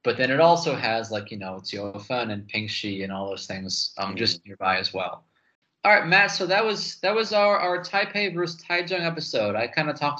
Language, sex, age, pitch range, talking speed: English, male, 20-39, 110-140 Hz, 225 wpm